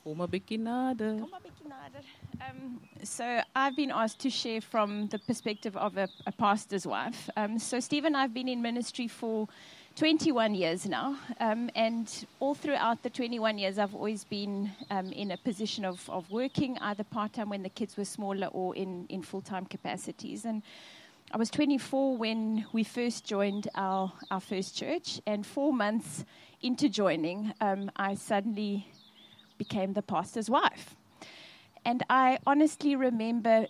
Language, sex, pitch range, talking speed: English, female, 195-235 Hz, 150 wpm